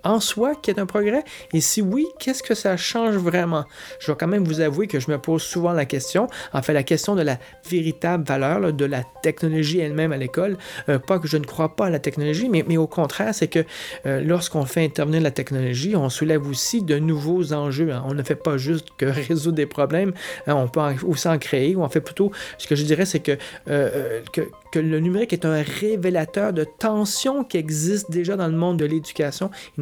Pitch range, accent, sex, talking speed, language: 145-180 Hz, Canadian, male, 225 wpm, French